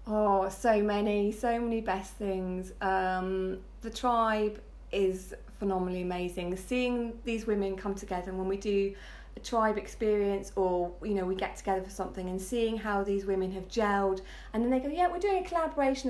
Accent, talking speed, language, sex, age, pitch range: British, 185 wpm, English, female, 30-49, 190-235 Hz